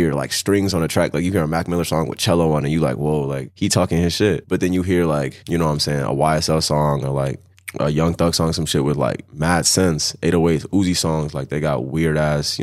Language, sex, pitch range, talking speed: English, male, 80-95 Hz, 275 wpm